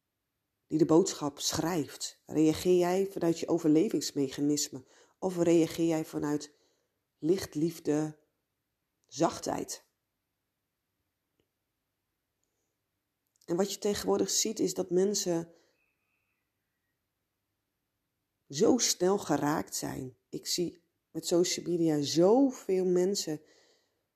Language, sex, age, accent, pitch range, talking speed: Dutch, female, 40-59, Dutch, 135-180 Hz, 85 wpm